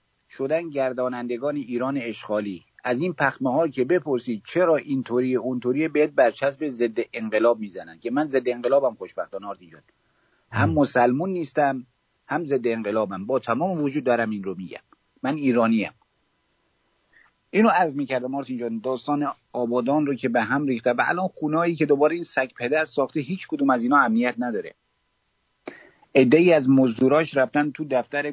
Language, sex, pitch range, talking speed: English, male, 120-150 Hz, 160 wpm